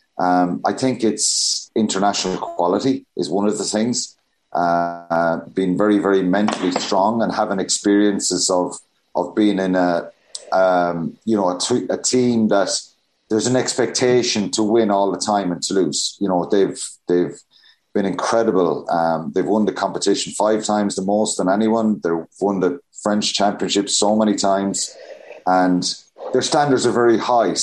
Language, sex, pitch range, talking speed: English, male, 95-115 Hz, 165 wpm